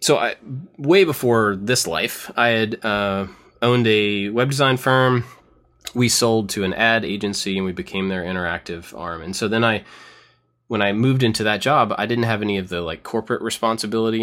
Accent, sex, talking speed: American, male, 190 wpm